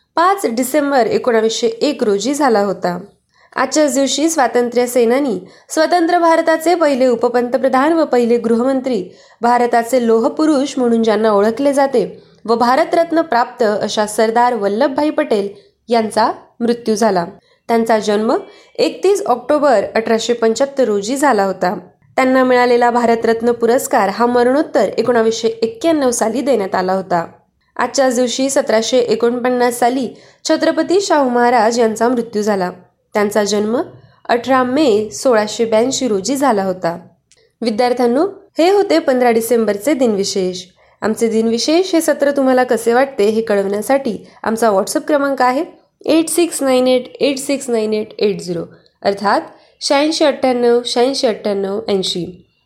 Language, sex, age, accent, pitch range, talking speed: Marathi, female, 20-39, native, 220-275 Hz, 110 wpm